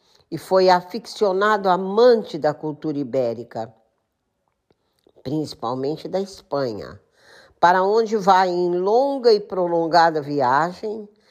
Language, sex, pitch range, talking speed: Portuguese, female, 150-210 Hz, 95 wpm